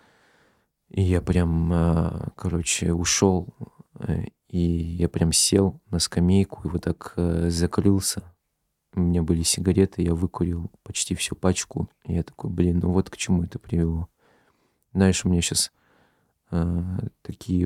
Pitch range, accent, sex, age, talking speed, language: 85-95 Hz, native, male, 30-49, 130 wpm, Russian